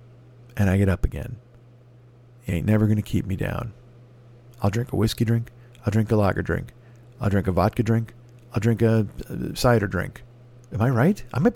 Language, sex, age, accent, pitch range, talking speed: English, male, 40-59, American, 110-135 Hz, 200 wpm